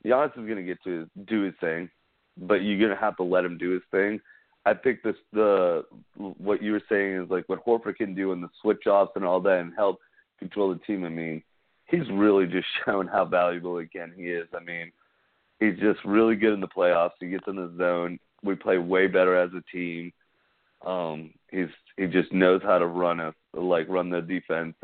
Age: 30-49